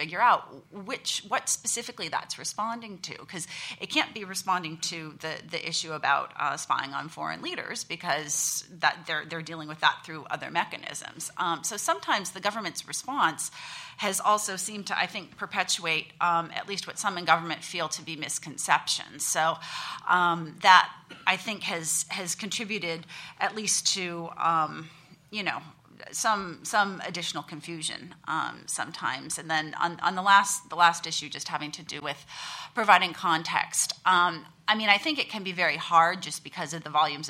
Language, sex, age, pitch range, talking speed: English, female, 30-49, 155-190 Hz, 175 wpm